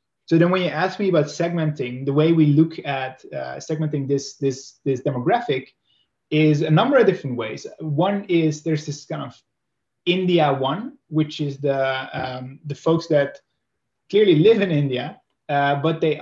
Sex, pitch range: male, 130-160 Hz